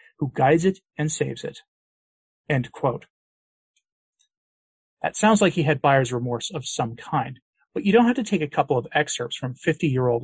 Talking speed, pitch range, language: 175 wpm, 130-180 Hz, English